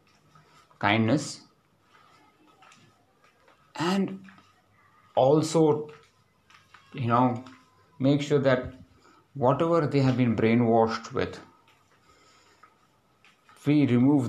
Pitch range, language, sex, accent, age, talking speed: 110-130 Hz, English, male, Indian, 50-69, 65 wpm